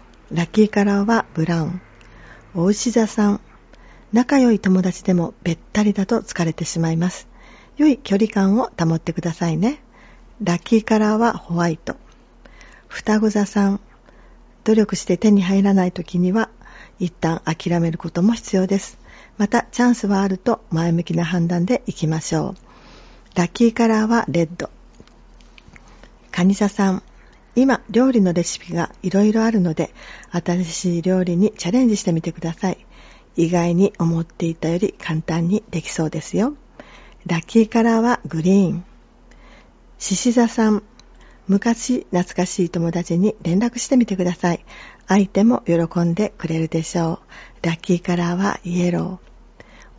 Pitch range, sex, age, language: 170-215 Hz, female, 40-59, Japanese